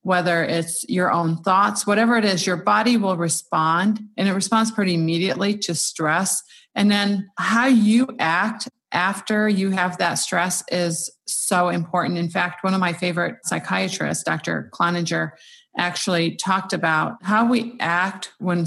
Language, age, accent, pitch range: English, 30-49, American, 165-205 Hz